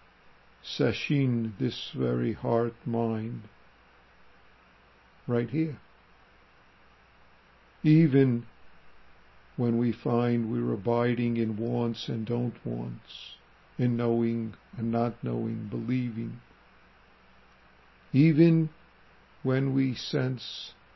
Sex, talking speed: male, 80 wpm